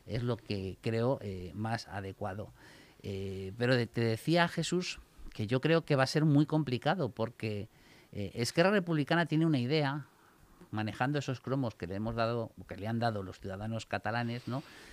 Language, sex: Spanish, male